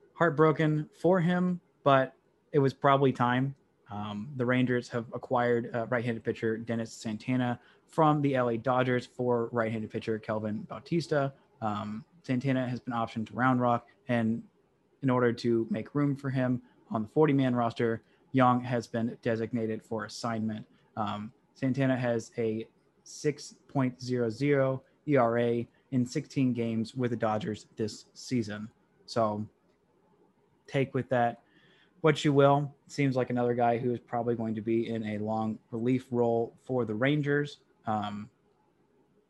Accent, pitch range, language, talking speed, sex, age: American, 115-135 Hz, English, 140 wpm, male, 20-39